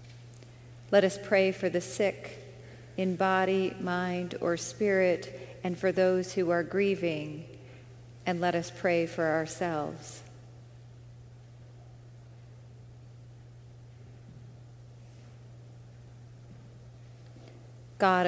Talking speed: 80 wpm